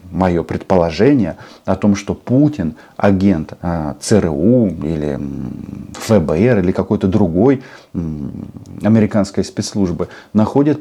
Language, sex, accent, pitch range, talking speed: Russian, male, native, 95-125 Hz, 90 wpm